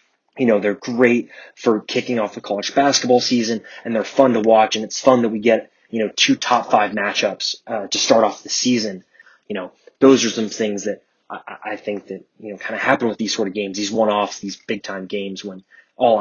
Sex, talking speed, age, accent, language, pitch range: male, 235 wpm, 20-39, American, English, 105-125 Hz